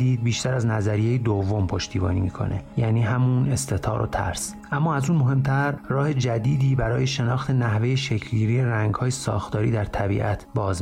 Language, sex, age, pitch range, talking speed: Persian, male, 30-49, 110-130 Hz, 150 wpm